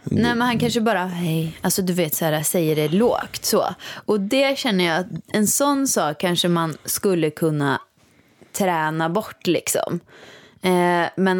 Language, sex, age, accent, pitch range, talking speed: Swedish, female, 20-39, native, 165-210 Hz, 170 wpm